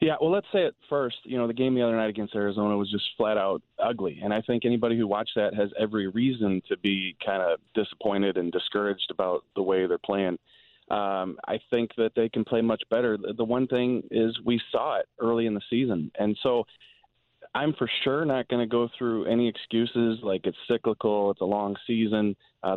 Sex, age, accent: male, 30-49, American